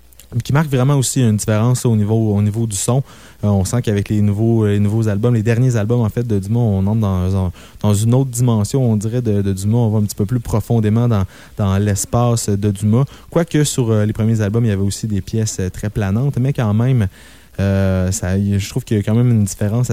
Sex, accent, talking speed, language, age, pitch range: male, Canadian, 240 wpm, French, 20-39, 100-120 Hz